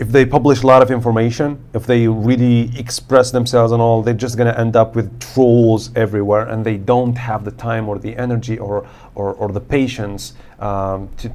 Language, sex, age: English, male, 30-49